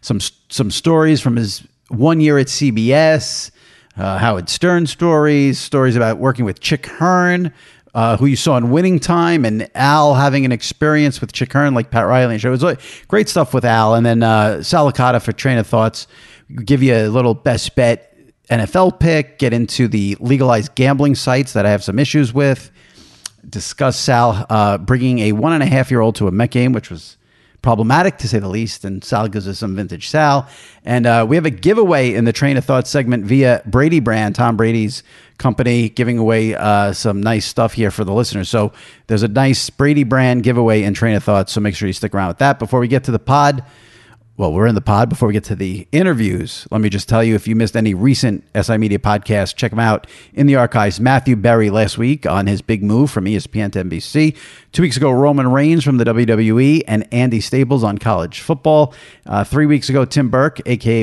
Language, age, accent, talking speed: English, 50-69, American, 215 wpm